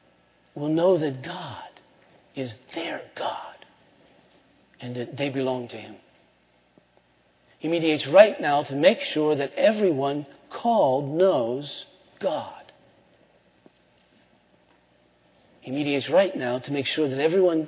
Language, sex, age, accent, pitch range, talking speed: English, male, 50-69, American, 120-155 Hz, 115 wpm